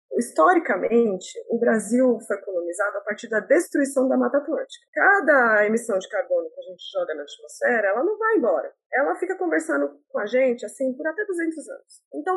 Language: Portuguese